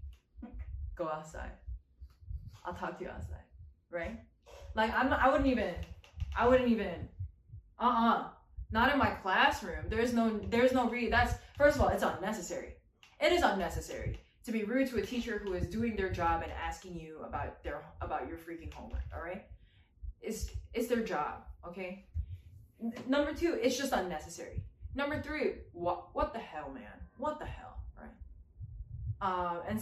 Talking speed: 165 wpm